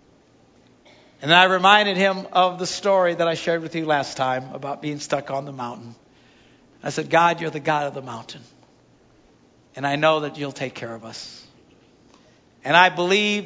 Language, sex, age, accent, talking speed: English, male, 60-79, American, 185 wpm